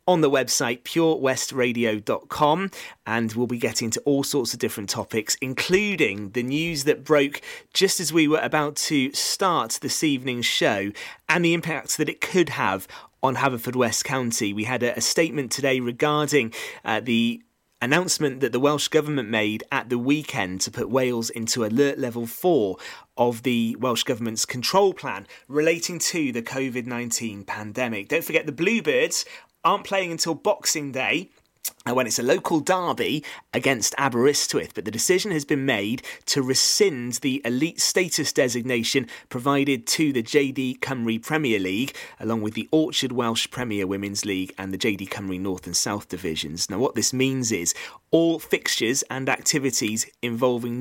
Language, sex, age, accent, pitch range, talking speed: English, male, 30-49, British, 115-150 Hz, 160 wpm